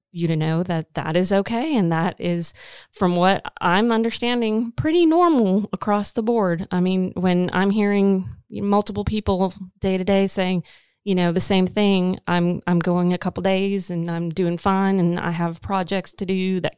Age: 30-49